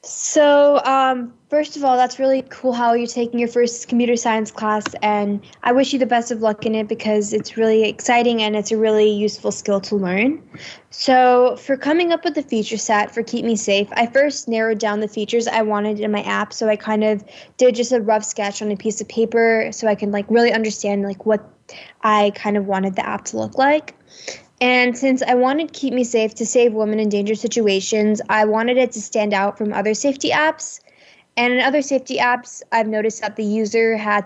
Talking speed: 220 wpm